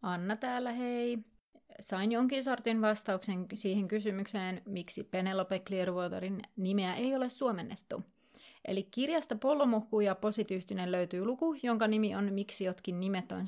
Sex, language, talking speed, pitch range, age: female, Finnish, 135 wpm, 190-235 Hz, 30-49